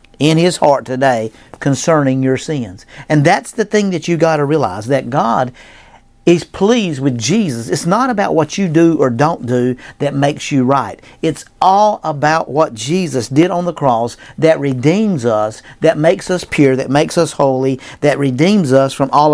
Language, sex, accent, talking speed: English, male, American, 185 wpm